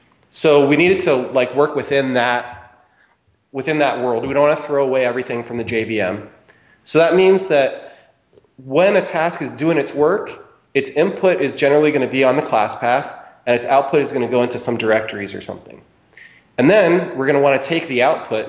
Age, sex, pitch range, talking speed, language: 30-49, male, 115-140 Hz, 210 wpm, English